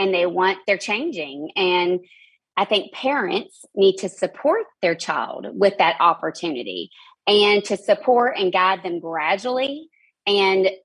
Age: 30-49